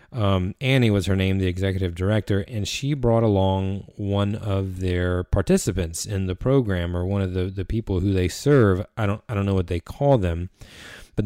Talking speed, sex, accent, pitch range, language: 205 wpm, male, American, 95-115 Hz, English